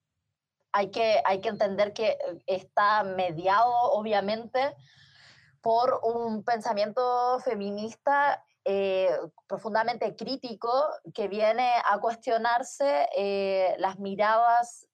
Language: Spanish